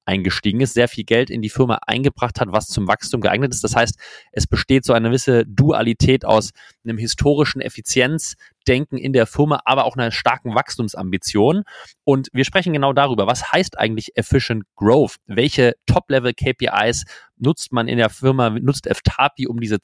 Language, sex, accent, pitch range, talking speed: German, male, German, 110-135 Hz, 170 wpm